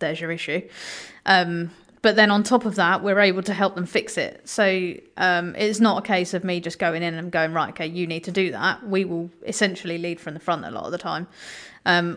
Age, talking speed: 30-49, 245 wpm